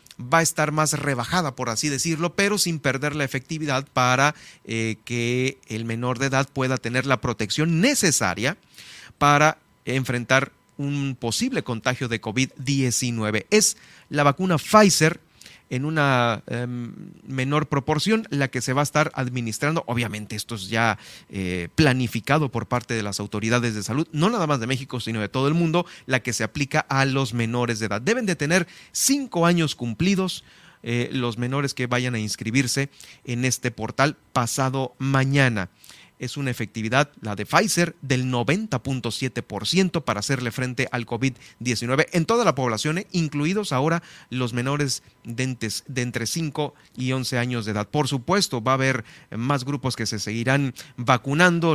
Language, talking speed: Spanish, 160 wpm